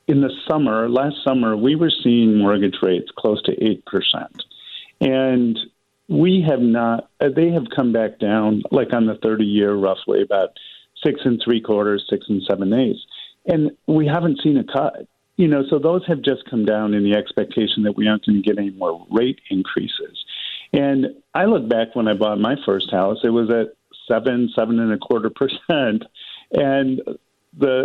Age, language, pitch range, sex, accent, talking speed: 50-69, English, 105-140 Hz, male, American, 185 wpm